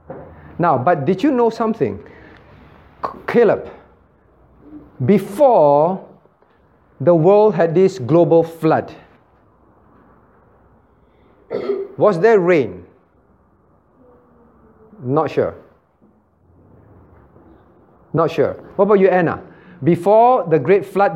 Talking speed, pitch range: 80 wpm, 155-220 Hz